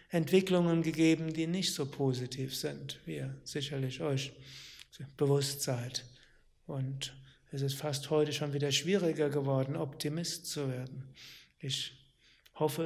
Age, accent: 60-79, German